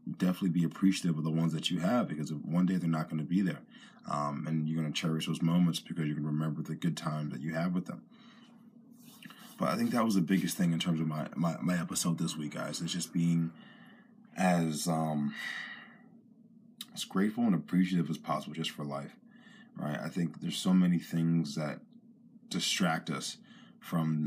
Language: English